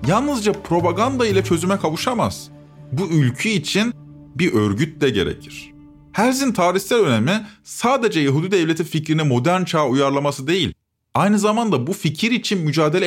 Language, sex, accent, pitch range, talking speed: Turkish, male, native, 120-190 Hz, 135 wpm